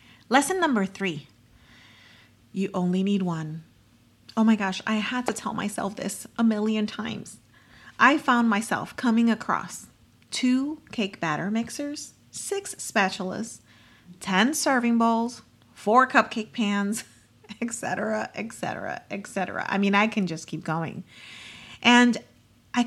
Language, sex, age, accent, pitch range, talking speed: English, female, 30-49, American, 180-235 Hz, 125 wpm